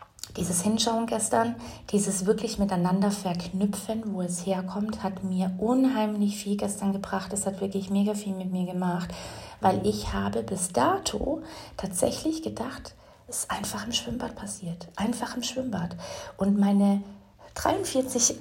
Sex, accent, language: female, German, German